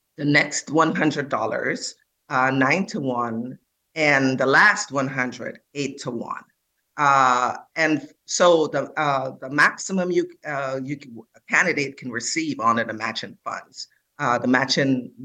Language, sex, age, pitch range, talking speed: English, female, 50-69, 130-165 Hz, 145 wpm